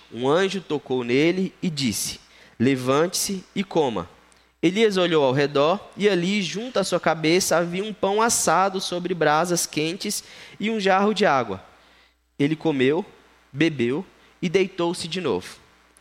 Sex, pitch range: male, 120-185 Hz